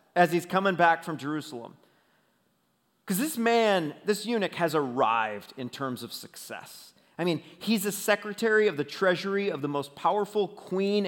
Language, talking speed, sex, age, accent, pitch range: English, 160 wpm, male, 30-49, American, 155-210 Hz